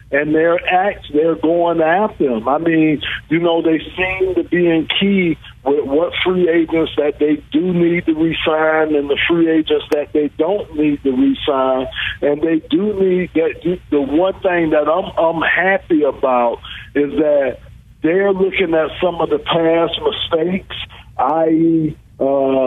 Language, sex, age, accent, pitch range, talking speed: English, male, 50-69, American, 145-175 Hz, 165 wpm